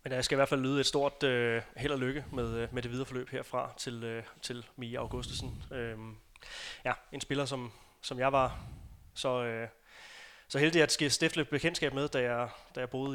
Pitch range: 120-135 Hz